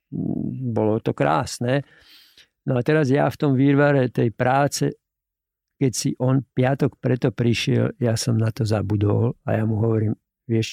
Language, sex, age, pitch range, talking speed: Slovak, male, 50-69, 115-135 Hz, 155 wpm